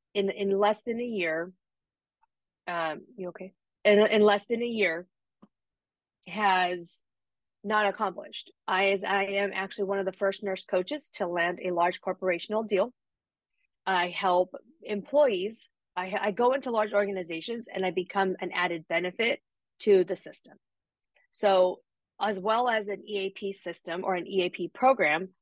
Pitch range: 180-205 Hz